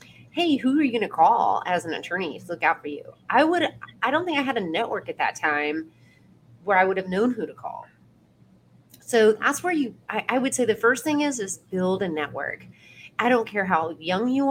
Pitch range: 175-235 Hz